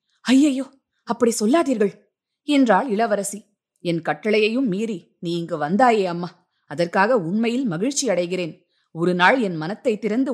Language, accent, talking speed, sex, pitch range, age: Tamil, native, 120 wpm, female, 180-245 Hz, 20-39